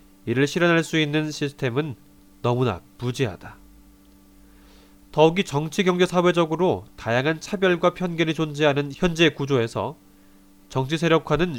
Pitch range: 100-160 Hz